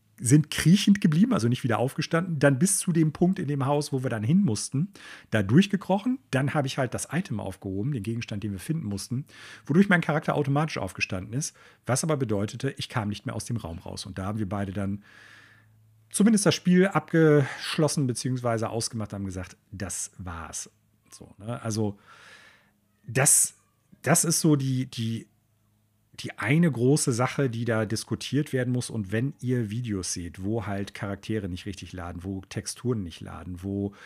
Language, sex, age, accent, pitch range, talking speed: German, male, 40-59, German, 100-140 Hz, 180 wpm